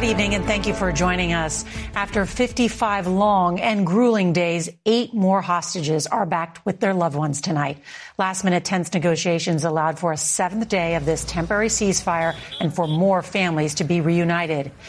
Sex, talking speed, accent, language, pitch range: female, 175 wpm, American, English, 160-195 Hz